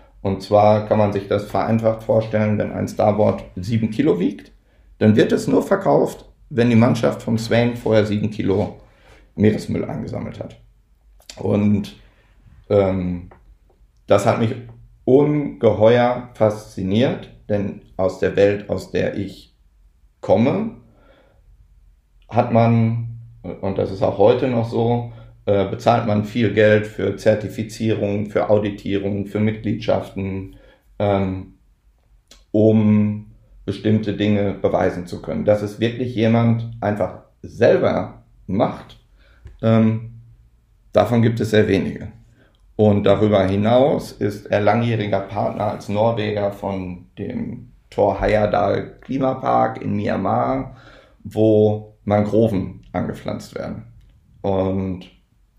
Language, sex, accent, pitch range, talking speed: German, male, German, 100-115 Hz, 110 wpm